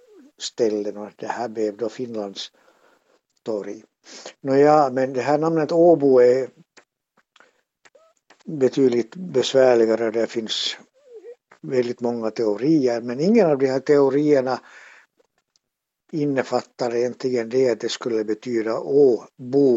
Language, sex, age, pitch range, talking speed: Swedish, male, 60-79, 115-140 Hz, 110 wpm